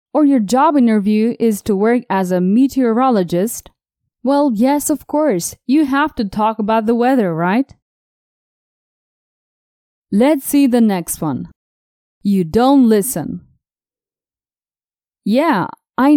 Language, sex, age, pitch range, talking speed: English, female, 20-39, 200-275 Hz, 120 wpm